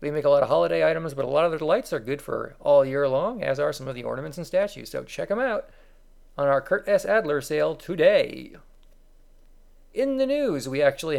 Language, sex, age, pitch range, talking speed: English, male, 40-59, 135-165 Hz, 230 wpm